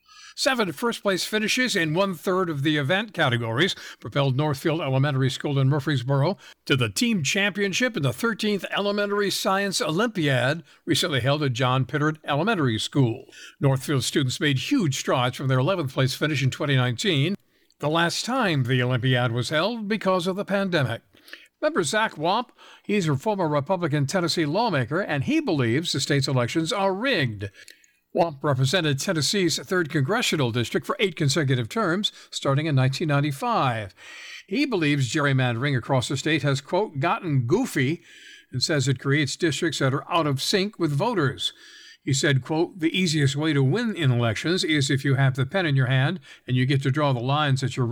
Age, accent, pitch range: 60-79, American, 135-185 Hz